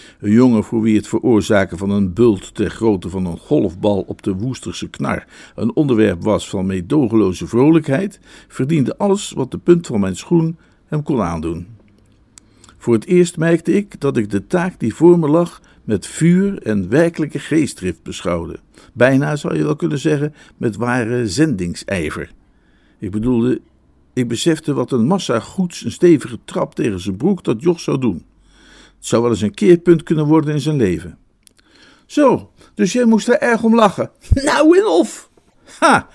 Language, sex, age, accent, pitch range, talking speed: Dutch, male, 50-69, Dutch, 105-165 Hz, 175 wpm